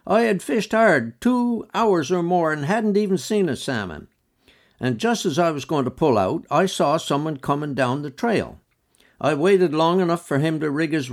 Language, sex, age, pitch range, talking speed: English, male, 60-79, 130-185 Hz, 210 wpm